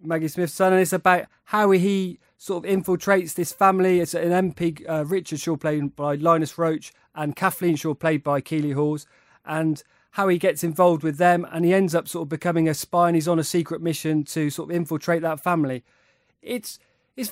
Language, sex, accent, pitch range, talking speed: English, male, British, 165-195 Hz, 210 wpm